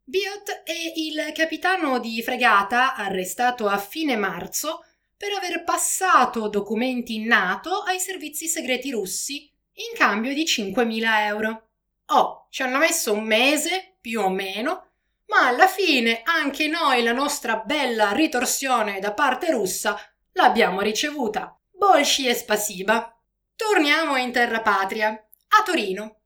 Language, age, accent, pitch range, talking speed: Italian, 30-49, native, 215-315 Hz, 130 wpm